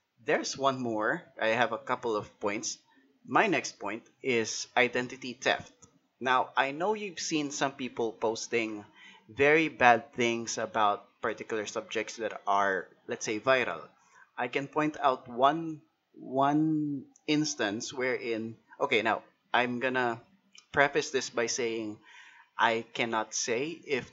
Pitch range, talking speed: 115-145 Hz, 135 wpm